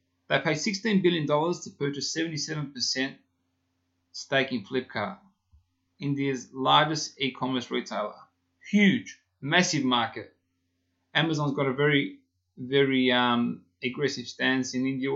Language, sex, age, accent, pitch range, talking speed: English, male, 20-39, Australian, 90-145 Hz, 105 wpm